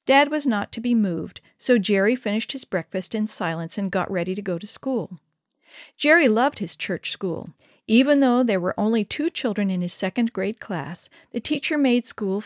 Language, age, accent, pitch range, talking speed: English, 50-69, American, 190-250 Hz, 200 wpm